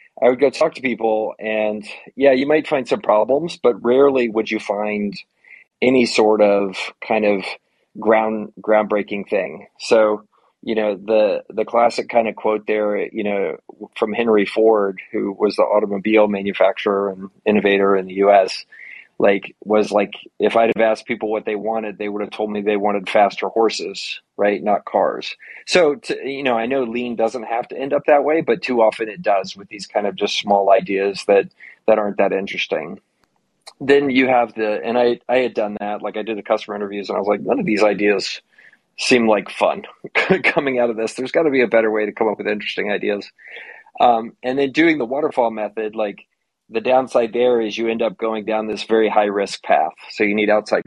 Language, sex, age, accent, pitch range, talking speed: English, male, 30-49, American, 105-120 Hz, 205 wpm